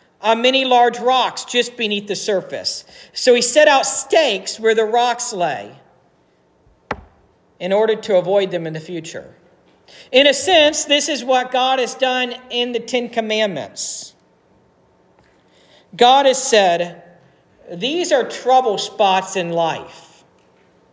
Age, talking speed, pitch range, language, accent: 50-69, 135 wpm, 190-255 Hz, English, American